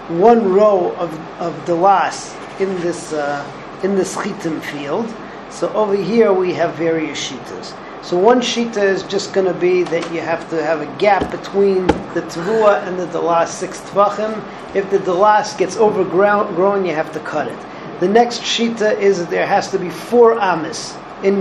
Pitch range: 165-205 Hz